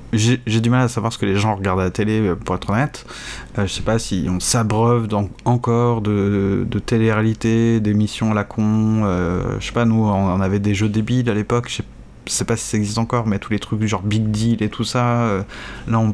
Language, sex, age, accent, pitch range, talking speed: French, male, 20-39, French, 105-120 Hz, 240 wpm